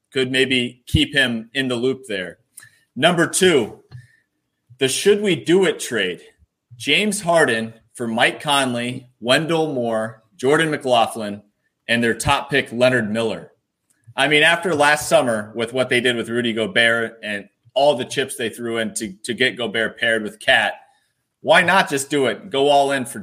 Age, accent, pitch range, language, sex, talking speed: 30-49, American, 115-140 Hz, English, male, 170 wpm